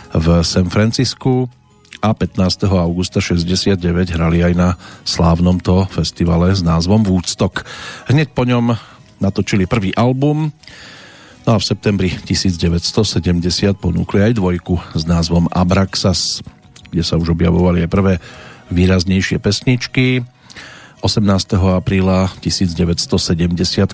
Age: 40-59